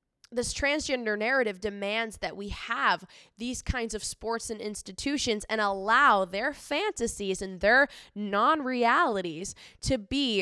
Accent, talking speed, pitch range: American, 125 wpm, 200-290 Hz